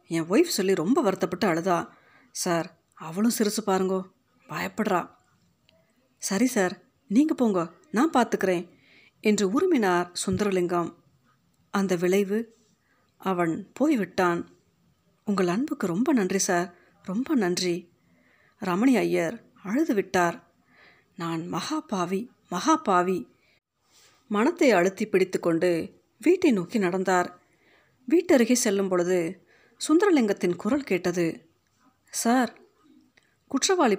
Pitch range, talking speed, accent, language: 180-245 Hz, 95 wpm, native, Tamil